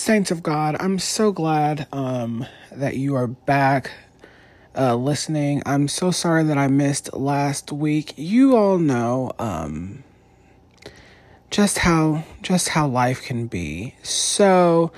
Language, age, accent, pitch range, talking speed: English, 30-49, American, 140-175 Hz, 130 wpm